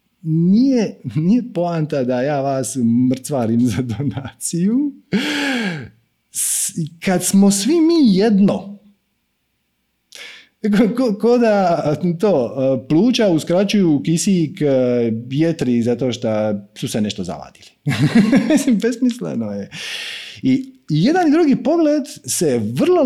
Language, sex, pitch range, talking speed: Croatian, male, 130-215 Hz, 100 wpm